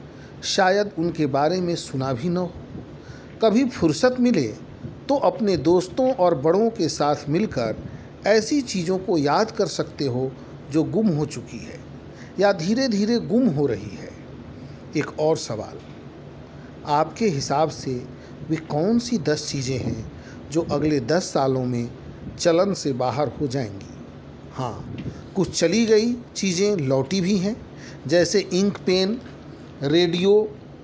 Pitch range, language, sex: 135-190 Hz, Hindi, male